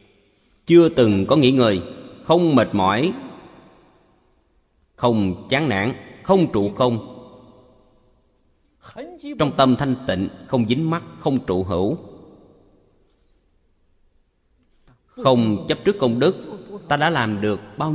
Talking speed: 115 wpm